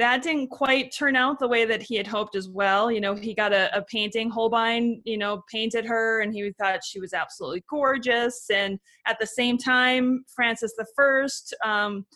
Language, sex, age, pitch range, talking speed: English, female, 20-39, 205-275 Hz, 195 wpm